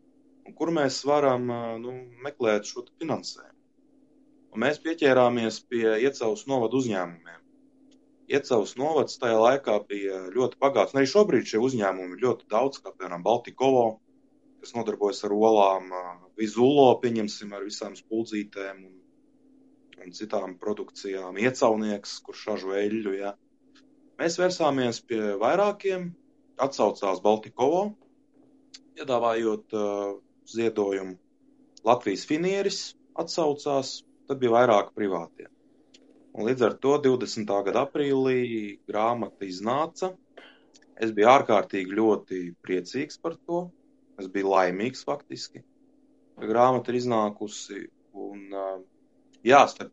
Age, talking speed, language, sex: 20-39, 110 wpm, English, male